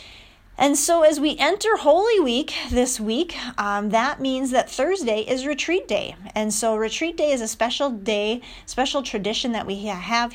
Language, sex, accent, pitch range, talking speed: English, female, American, 180-240 Hz, 175 wpm